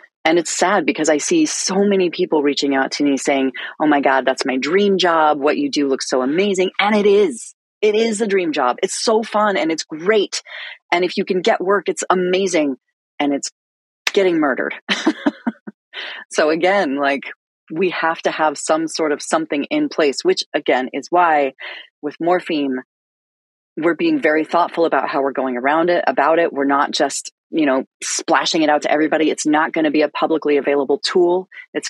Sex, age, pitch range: female, 30-49, 145-190 Hz